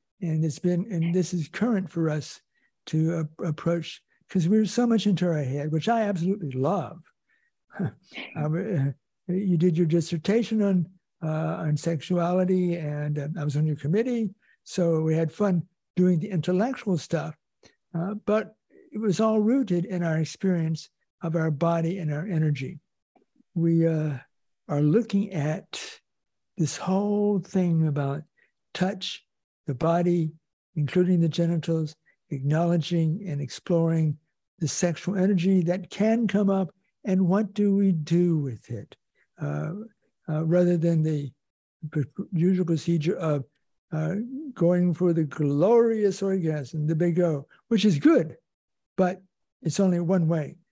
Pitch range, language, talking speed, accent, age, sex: 155-190 Hz, English, 140 wpm, American, 60-79, male